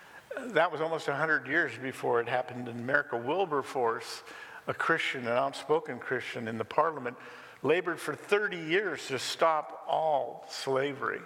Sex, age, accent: male, 50-69, American